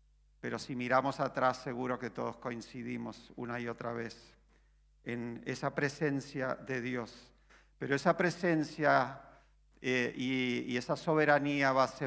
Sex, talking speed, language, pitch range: male, 135 wpm, Spanish, 125-150 Hz